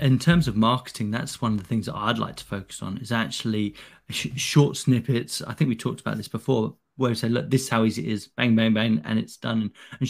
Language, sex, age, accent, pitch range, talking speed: English, male, 30-49, British, 110-130 Hz, 255 wpm